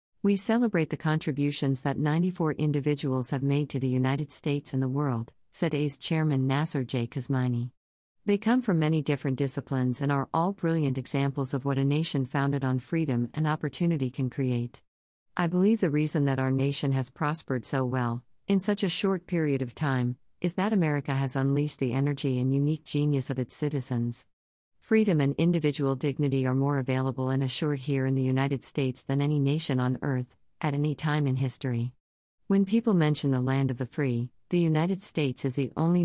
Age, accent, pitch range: 50-69, American, 130-155 Hz